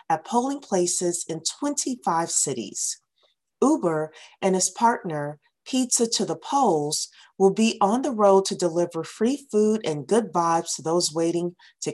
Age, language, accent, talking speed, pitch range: 40-59, English, American, 150 wpm, 165-225 Hz